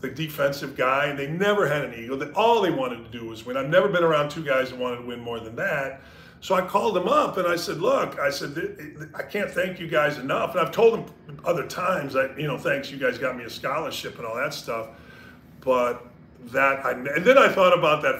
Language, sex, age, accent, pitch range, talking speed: English, male, 40-59, American, 130-170 Hz, 250 wpm